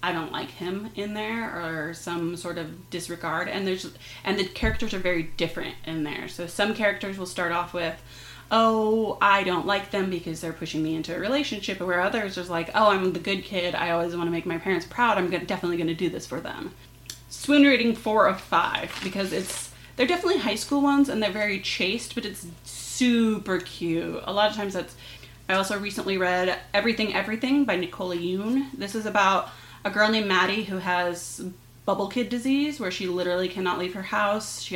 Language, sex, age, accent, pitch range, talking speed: English, female, 30-49, American, 170-210 Hz, 205 wpm